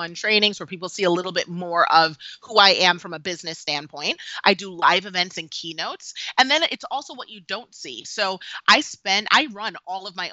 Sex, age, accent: female, 30-49, American